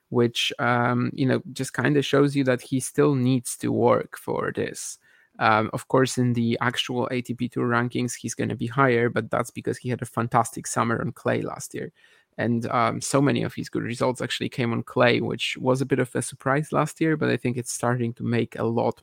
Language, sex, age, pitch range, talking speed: English, male, 20-39, 120-135 Hz, 225 wpm